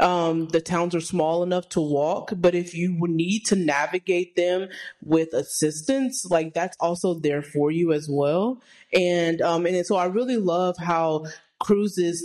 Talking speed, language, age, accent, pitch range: 170 wpm, English, 20-39, American, 150-180 Hz